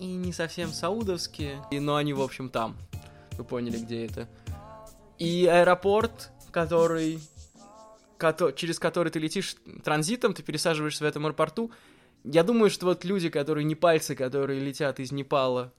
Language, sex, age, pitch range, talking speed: Russian, male, 20-39, 130-165 Hz, 150 wpm